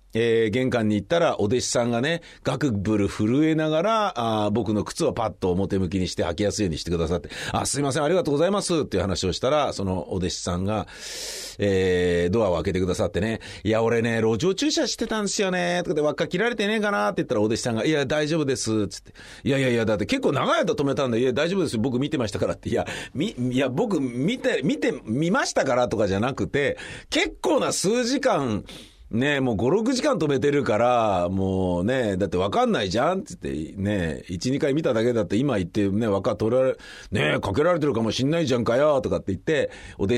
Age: 40-59